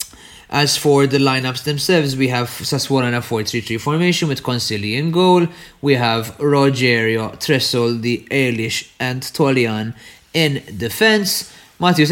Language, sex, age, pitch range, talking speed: English, male, 30-49, 110-145 Hz, 140 wpm